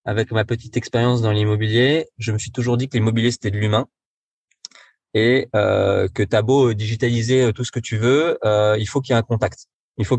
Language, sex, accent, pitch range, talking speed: French, male, French, 100-120 Hz, 220 wpm